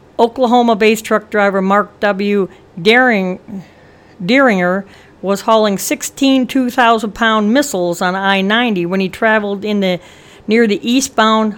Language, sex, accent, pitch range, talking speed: English, female, American, 180-230 Hz, 115 wpm